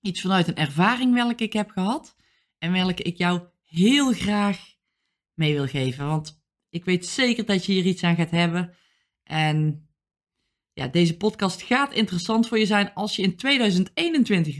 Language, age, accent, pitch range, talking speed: Dutch, 20-39, Dutch, 165-225 Hz, 165 wpm